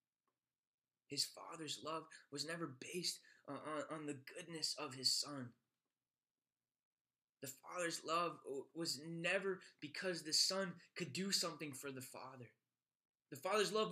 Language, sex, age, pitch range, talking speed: English, male, 20-39, 170-230 Hz, 135 wpm